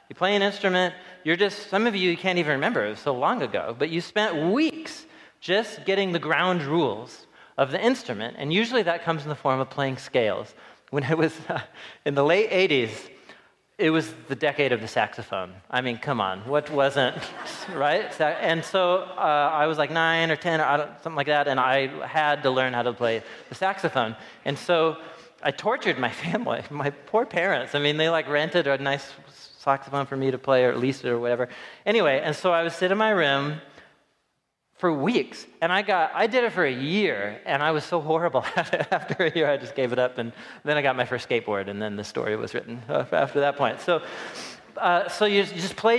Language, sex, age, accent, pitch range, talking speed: English, male, 30-49, American, 135-180 Hz, 215 wpm